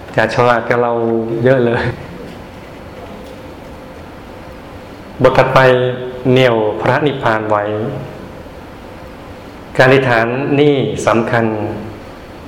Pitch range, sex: 110-130 Hz, male